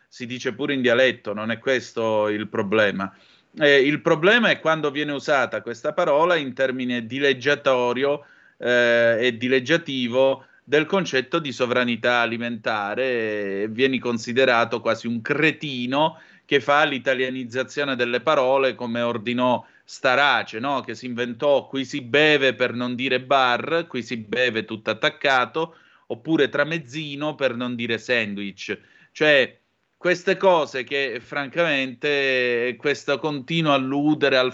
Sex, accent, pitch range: male, native, 120-155 Hz